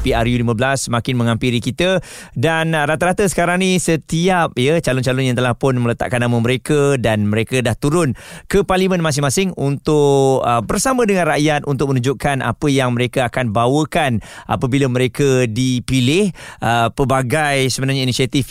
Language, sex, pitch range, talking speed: Malay, male, 120-155 Hz, 140 wpm